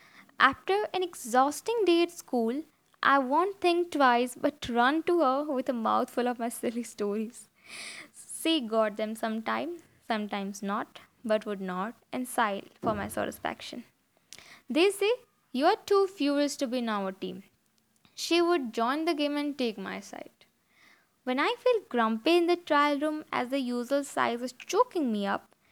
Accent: native